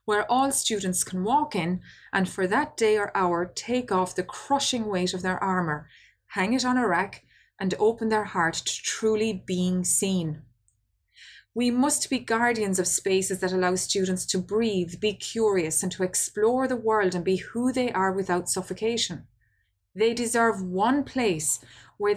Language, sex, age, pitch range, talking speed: English, female, 20-39, 175-225 Hz, 170 wpm